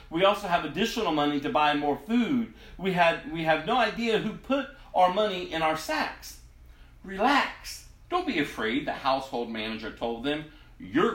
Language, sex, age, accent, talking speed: English, male, 40-59, American, 170 wpm